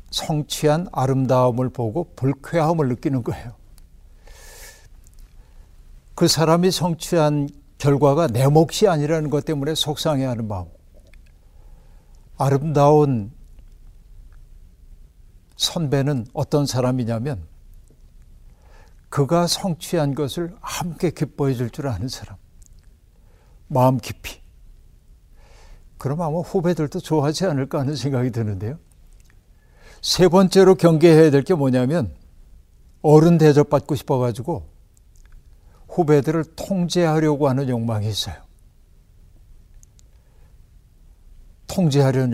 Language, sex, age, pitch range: Korean, male, 60-79, 100-160 Hz